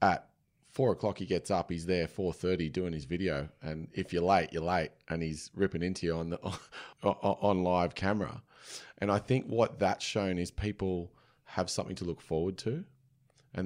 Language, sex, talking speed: English, male, 190 wpm